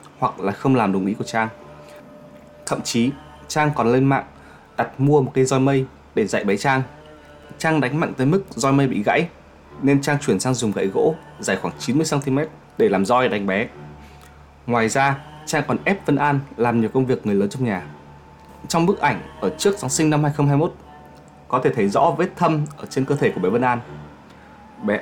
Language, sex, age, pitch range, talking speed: Vietnamese, male, 20-39, 105-145 Hz, 210 wpm